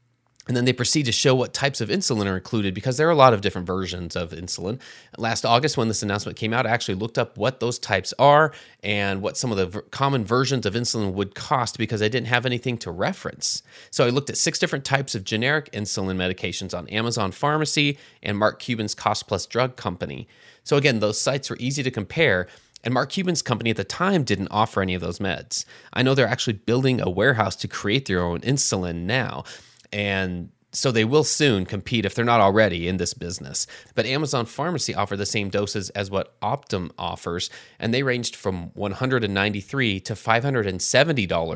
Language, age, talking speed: English, 30-49, 205 wpm